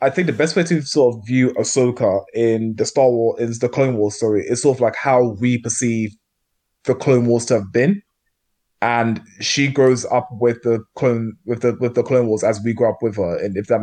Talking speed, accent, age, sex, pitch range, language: 215 wpm, British, 20-39, male, 105-125 Hz, English